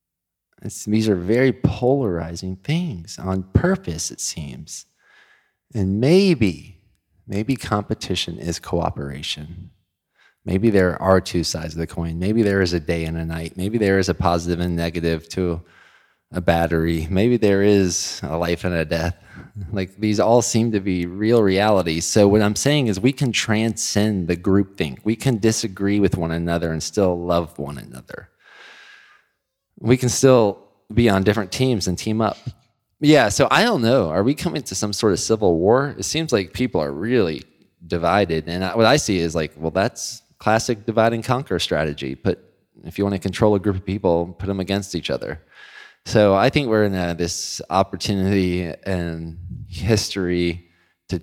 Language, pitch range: English, 85-110 Hz